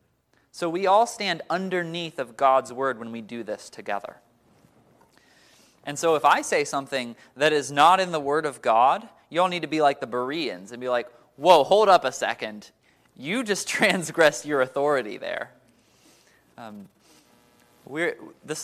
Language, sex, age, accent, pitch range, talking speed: English, male, 20-39, American, 125-185 Hz, 165 wpm